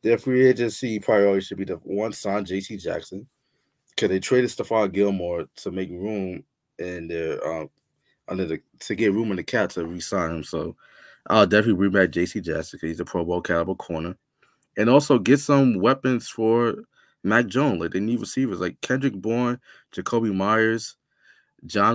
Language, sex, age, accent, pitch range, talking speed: English, male, 20-39, American, 90-115 Hz, 180 wpm